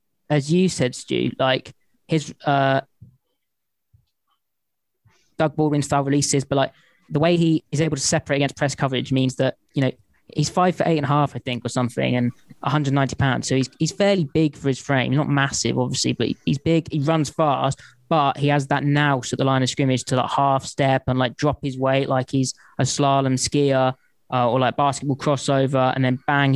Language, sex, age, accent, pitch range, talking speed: English, male, 20-39, British, 130-150 Hz, 205 wpm